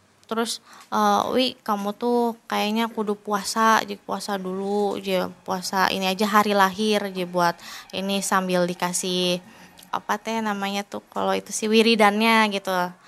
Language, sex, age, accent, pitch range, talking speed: Indonesian, female, 20-39, native, 190-245 Hz, 140 wpm